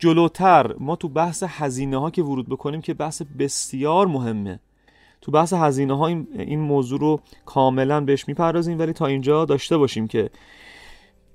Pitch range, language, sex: 135-165 Hz, Persian, male